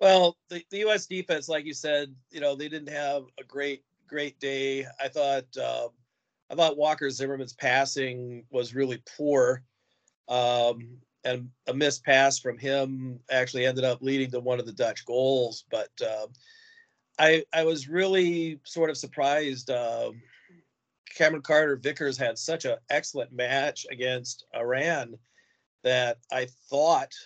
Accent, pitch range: American, 125-145 Hz